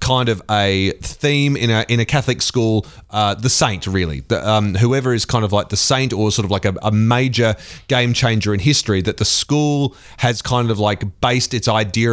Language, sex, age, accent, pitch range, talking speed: English, male, 30-49, Australian, 105-130 Hz, 220 wpm